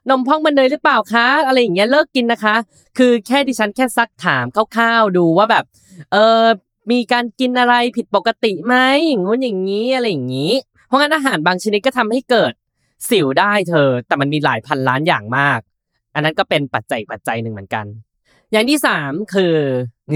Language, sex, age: Thai, female, 10-29